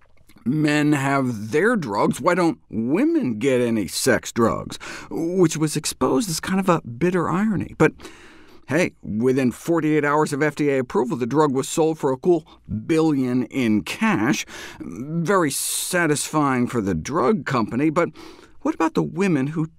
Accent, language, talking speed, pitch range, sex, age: American, English, 150 wpm, 115-165 Hz, male, 50-69